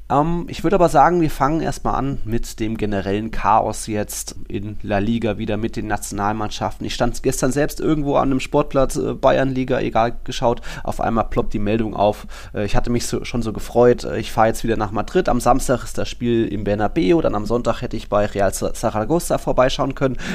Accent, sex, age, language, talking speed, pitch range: German, male, 20-39, German, 210 wpm, 105-130 Hz